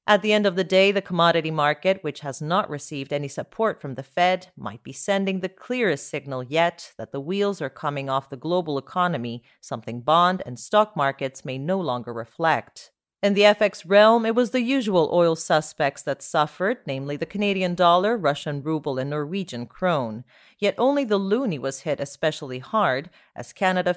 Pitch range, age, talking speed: 140-195 Hz, 40-59, 185 wpm